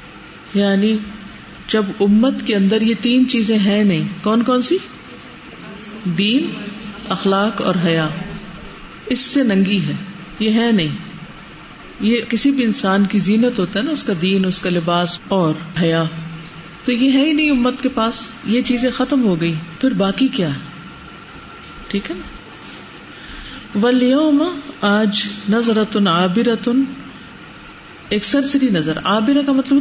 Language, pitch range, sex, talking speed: Urdu, 180-250 Hz, female, 145 wpm